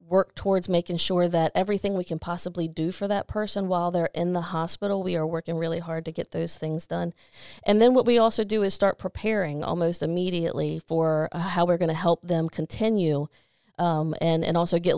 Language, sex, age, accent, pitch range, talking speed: English, female, 30-49, American, 160-180 Hz, 210 wpm